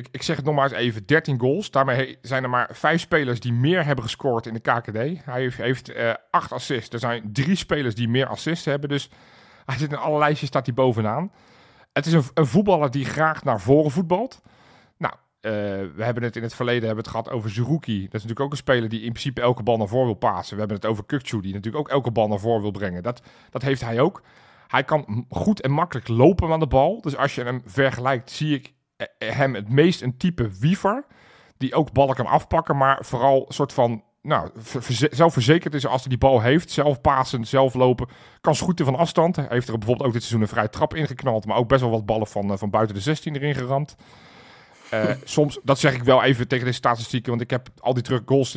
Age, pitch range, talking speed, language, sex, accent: 40-59, 120-145 Hz, 235 wpm, Dutch, male, Belgian